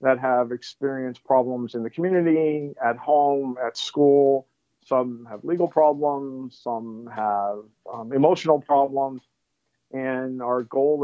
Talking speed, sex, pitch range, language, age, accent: 125 wpm, male, 120-145 Hz, English, 50-69, American